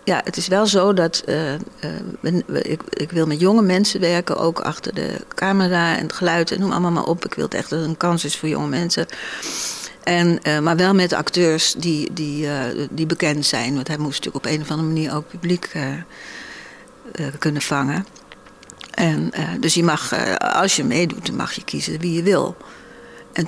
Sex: female